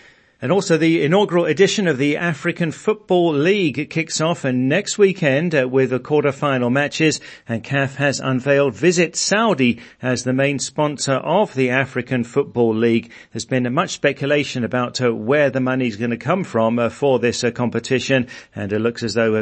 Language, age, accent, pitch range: English, 40-59, British, 120-150 Hz